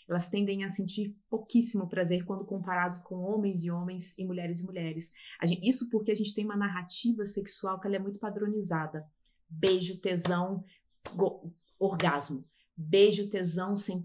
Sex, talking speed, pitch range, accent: female, 160 wpm, 180-215 Hz, Brazilian